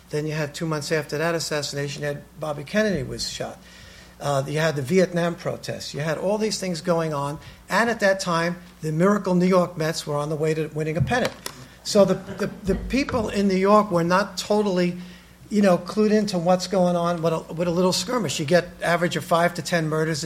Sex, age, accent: male, 50-69, American